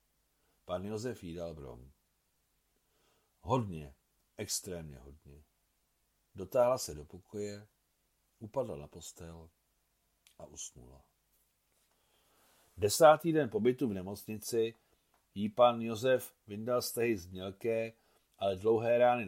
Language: Czech